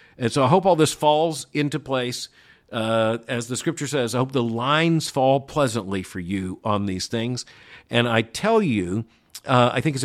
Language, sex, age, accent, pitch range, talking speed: English, male, 50-69, American, 110-145 Hz, 195 wpm